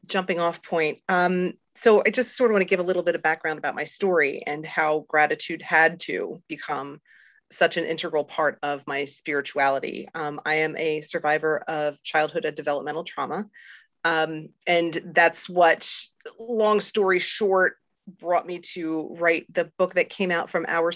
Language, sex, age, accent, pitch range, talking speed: English, female, 30-49, American, 155-185 Hz, 175 wpm